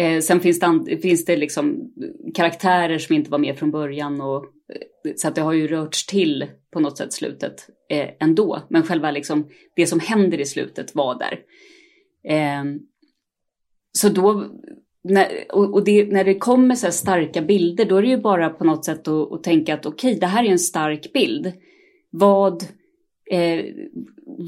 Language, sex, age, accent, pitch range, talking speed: Swedish, female, 30-49, native, 160-250 Hz, 175 wpm